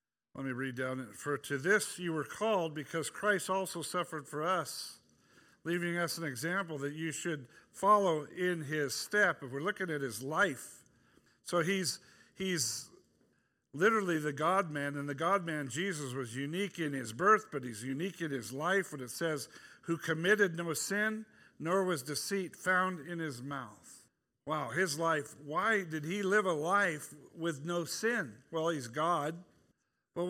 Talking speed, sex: 170 wpm, male